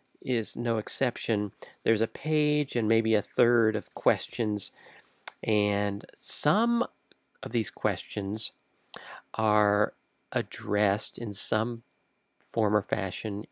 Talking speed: 105 wpm